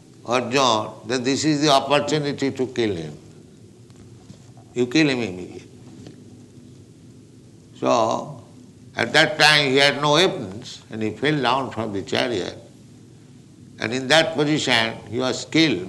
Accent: Indian